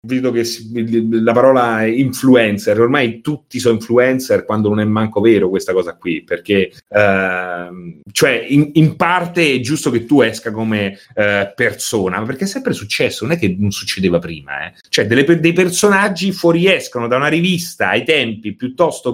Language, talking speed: Italian, 170 wpm